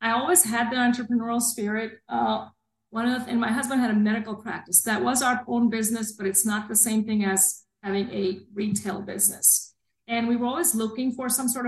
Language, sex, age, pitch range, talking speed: English, female, 40-59, 200-240 Hz, 215 wpm